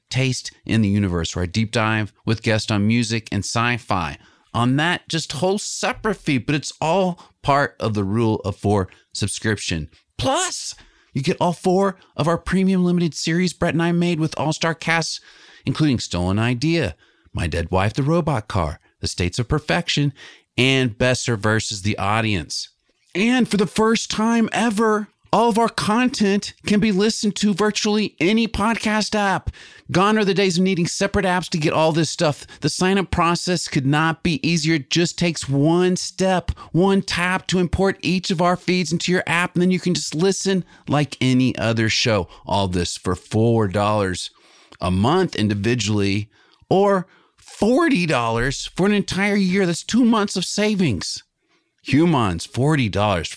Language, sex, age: English, male, 40-59